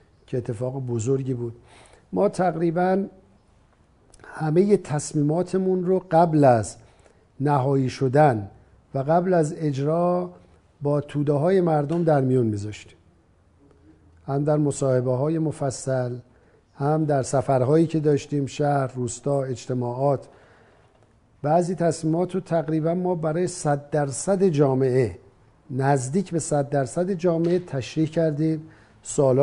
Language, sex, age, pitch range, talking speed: Persian, male, 50-69, 125-170 Hz, 110 wpm